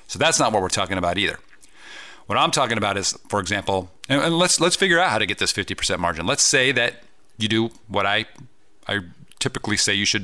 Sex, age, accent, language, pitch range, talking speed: male, 40-59, American, English, 90-120 Hz, 225 wpm